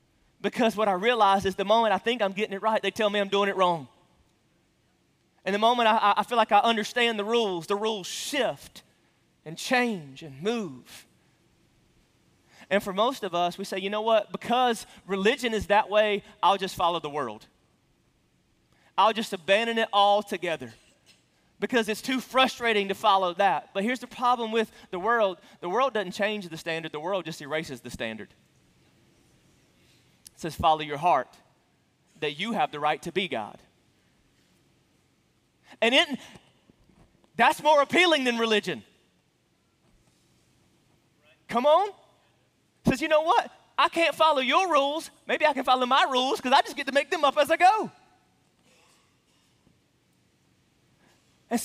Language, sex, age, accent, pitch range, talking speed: English, male, 30-49, American, 195-250 Hz, 160 wpm